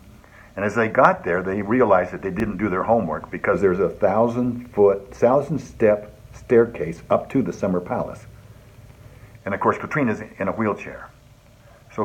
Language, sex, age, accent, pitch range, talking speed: English, male, 60-79, American, 100-125 Hz, 160 wpm